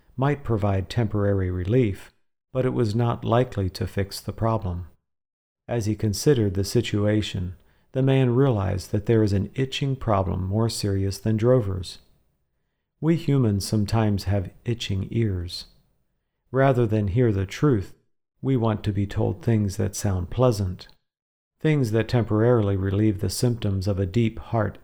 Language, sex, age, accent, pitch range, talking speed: English, male, 50-69, American, 100-120 Hz, 145 wpm